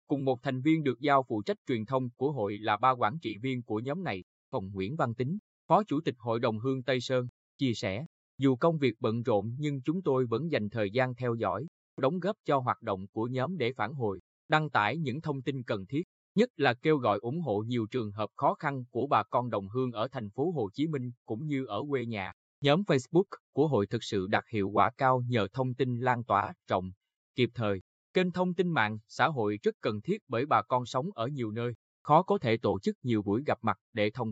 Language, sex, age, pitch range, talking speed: Vietnamese, male, 20-39, 110-150 Hz, 240 wpm